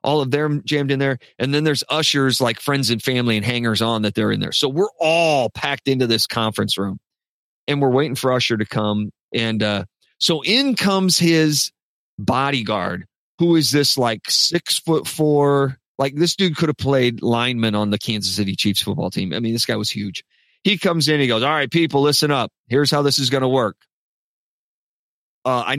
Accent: American